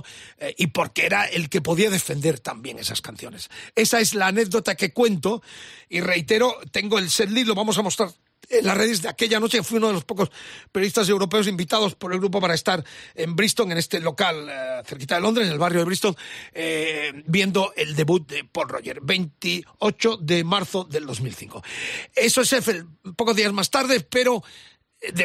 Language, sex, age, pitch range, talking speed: Spanish, male, 40-59, 175-225 Hz, 190 wpm